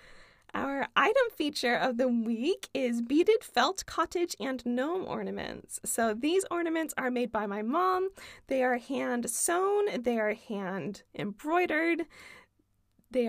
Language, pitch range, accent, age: English, 240-330 Hz, American, 20-39